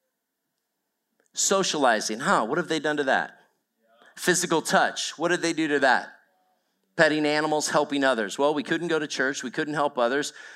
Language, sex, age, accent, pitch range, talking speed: English, male, 40-59, American, 140-185 Hz, 170 wpm